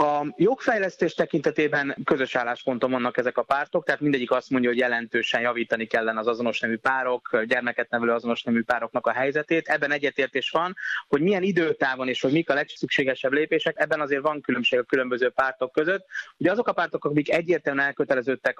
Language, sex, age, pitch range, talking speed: Hungarian, male, 30-49, 120-150 Hz, 175 wpm